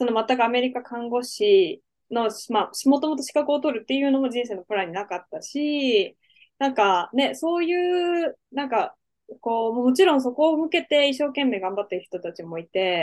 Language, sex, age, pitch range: Japanese, female, 10-29, 200-295 Hz